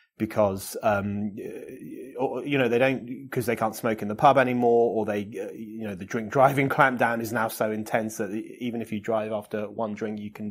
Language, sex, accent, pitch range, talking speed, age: English, male, British, 105-125 Hz, 205 wpm, 30-49